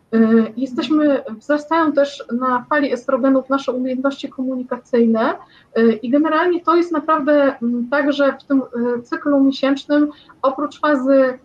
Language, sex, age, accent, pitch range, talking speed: Polish, female, 20-39, native, 250-300 Hz, 115 wpm